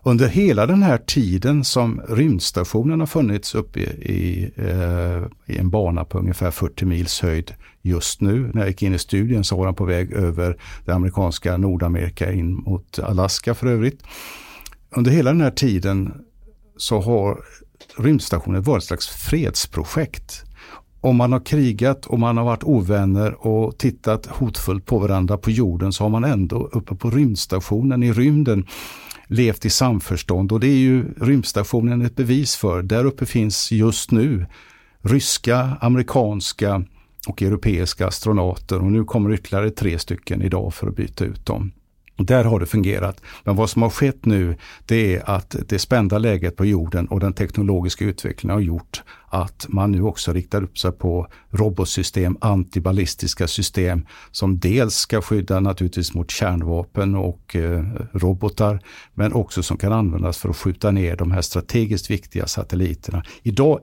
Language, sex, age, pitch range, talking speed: English, male, 60-79, 90-115 Hz, 160 wpm